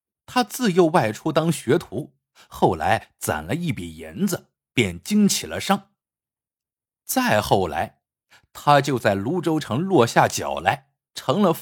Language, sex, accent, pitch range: Chinese, male, native, 125-205 Hz